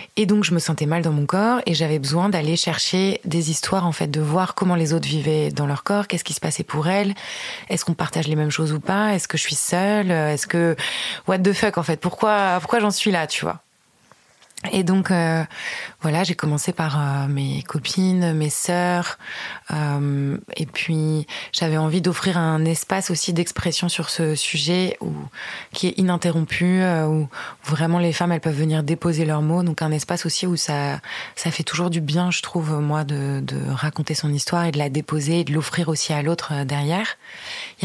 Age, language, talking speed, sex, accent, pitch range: 20-39, French, 210 wpm, female, French, 150-180 Hz